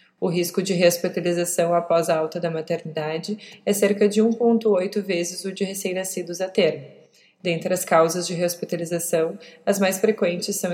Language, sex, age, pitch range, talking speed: Portuguese, female, 20-39, 170-205 Hz, 155 wpm